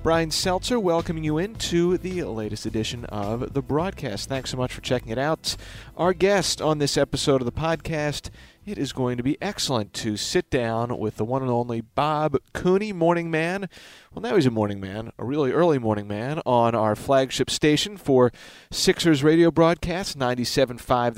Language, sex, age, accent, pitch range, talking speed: English, male, 40-59, American, 115-160 Hz, 180 wpm